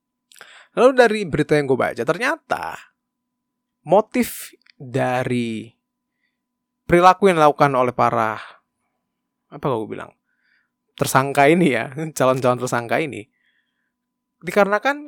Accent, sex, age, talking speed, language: native, male, 20-39, 95 wpm, Indonesian